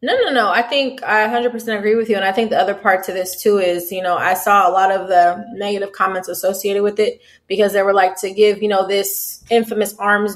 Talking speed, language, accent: 260 wpm, English, American